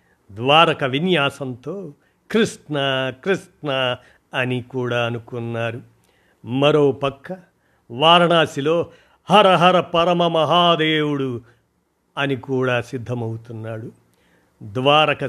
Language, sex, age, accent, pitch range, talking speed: Telugu, male, 50-69, native, 130-165 Hz, 65 wpm